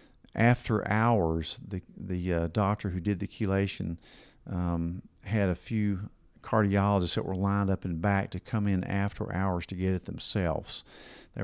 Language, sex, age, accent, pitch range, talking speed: English, male, 50-69, American, 95-115 Hz, 165 wpm